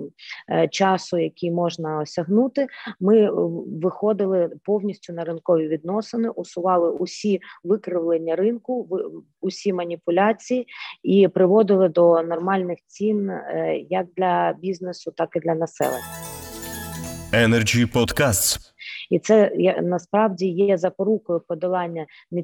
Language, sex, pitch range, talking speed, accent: Ukrainian, female, 165-195 Hz, 95 wpm, native